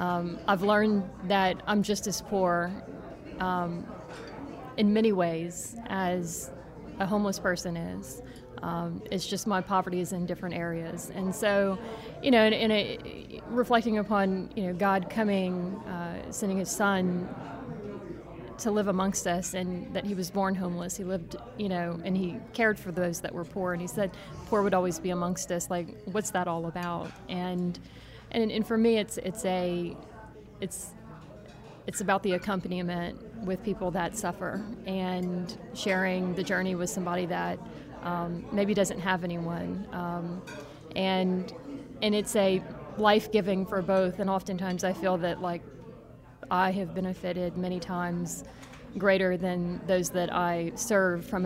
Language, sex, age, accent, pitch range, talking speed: English, female, 30-49, American, 175-200 Hz, 155 wpm